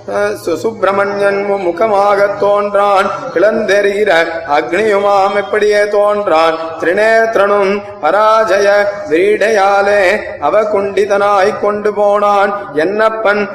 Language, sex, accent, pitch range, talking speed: Tamil, male, native, 195-210 Hz, 60 wpm